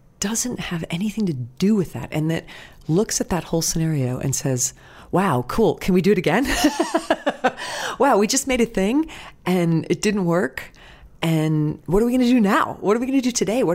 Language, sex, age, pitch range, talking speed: English, female, 30-49, 140-200 Hz, 215 wpm